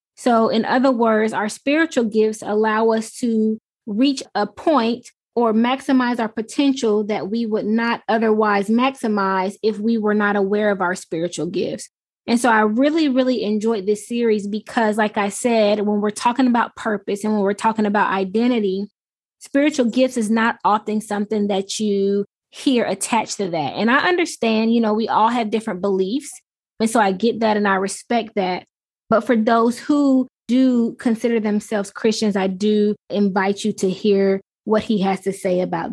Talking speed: 175 wpm